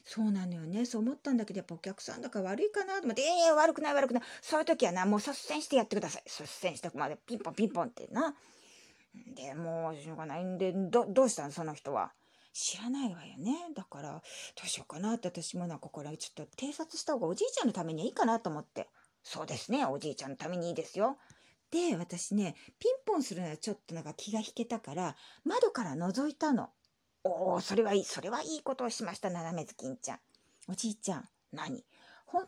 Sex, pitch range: female, 175-270 Hz